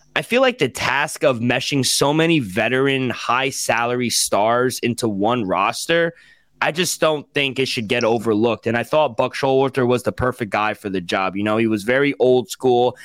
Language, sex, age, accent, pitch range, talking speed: English, male, 20-39, American, 120-145 Hz, 195 wpm